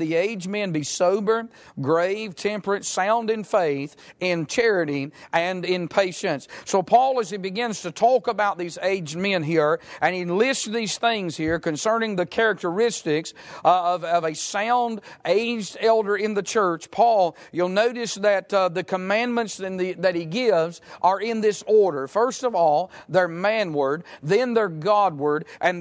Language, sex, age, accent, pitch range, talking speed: English, male, 50-69, American, 175-210 Hz, 165 wpm